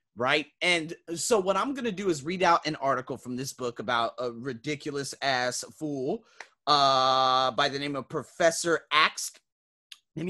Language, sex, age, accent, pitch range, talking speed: English, male, 30-49, American, 140-185 Hz, 165 wpm